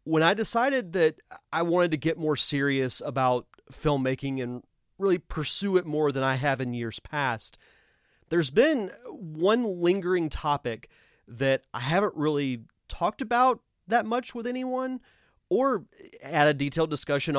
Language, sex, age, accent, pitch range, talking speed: English, male, 30-49, American, 130-165 Hz, 150 wpm